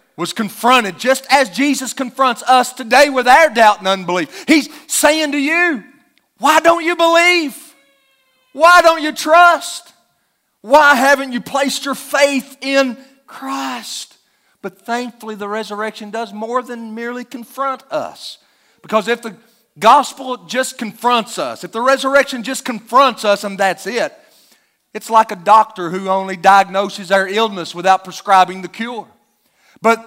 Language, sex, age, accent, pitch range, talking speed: English, male, 40-59, American, 195-265 Hz, 145 wpm